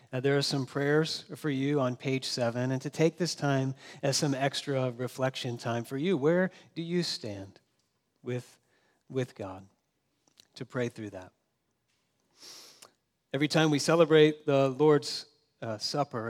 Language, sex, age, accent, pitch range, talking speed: English, male, 40-59, American, 130-155 Hz, 145 wpm